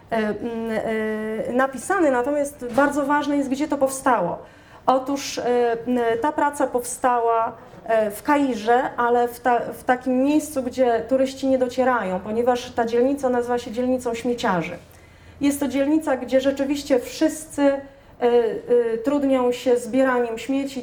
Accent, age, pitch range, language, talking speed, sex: native, 30-49, 235-275 Hz, Polish, 120 wpm, female